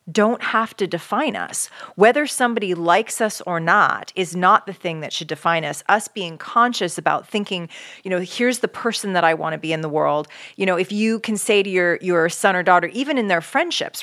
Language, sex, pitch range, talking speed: English, female, 165-210 Hz, 225 wpm